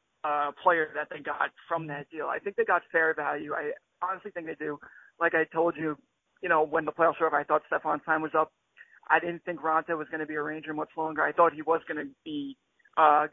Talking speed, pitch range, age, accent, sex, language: 255 wpm, 155-180 Hz, 20-39, American, male, English